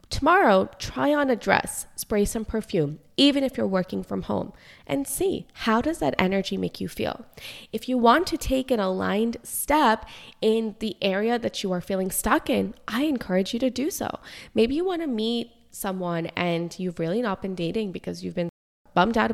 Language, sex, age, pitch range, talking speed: English, female, 20-39, 180-240 Hz, 195 wpm